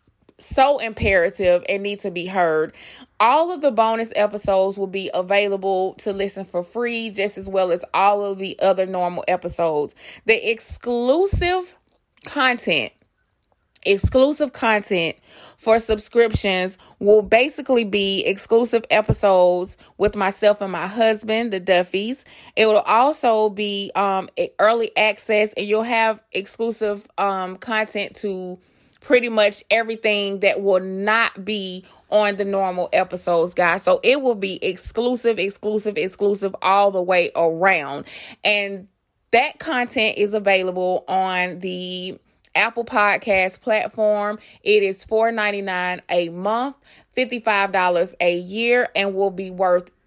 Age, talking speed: 20-39, 130 wpm